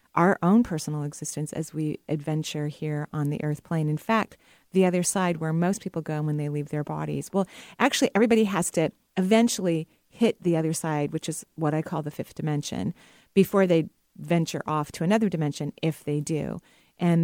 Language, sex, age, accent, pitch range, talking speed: English, female, 40-59, American, 155-190 Hz, 190 wpm